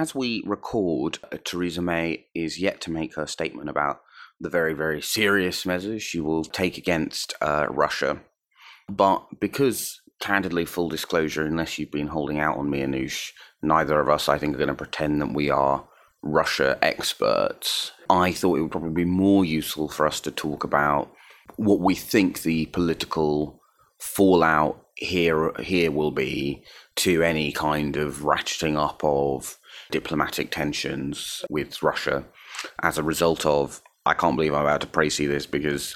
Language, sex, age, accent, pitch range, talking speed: English, male, 30-49, British, 75-85 Hz, 160 wpm